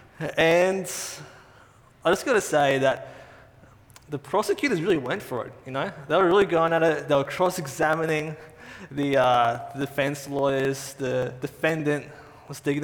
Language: English